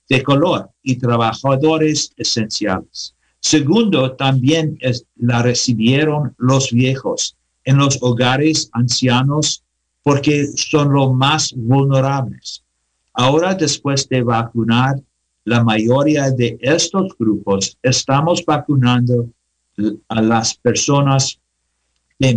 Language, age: English, 50-69